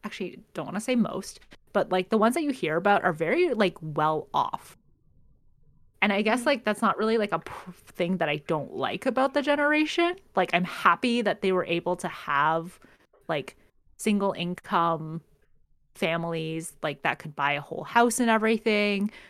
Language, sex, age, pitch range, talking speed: English, female, 20-39, 165-220 Hz, 175 wpm